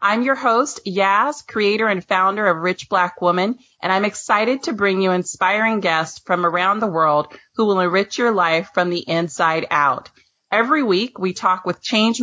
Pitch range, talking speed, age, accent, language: 180-225 Hz, 185 wpm, 30-49, American, English